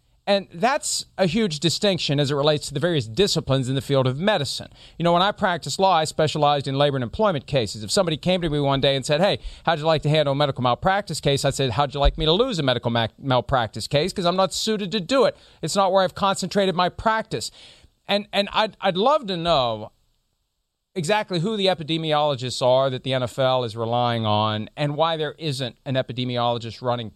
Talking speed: 220 wpm